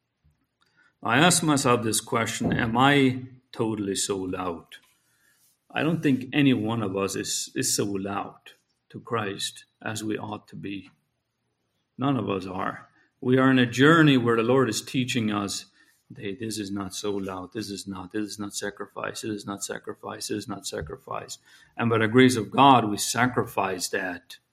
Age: 50-69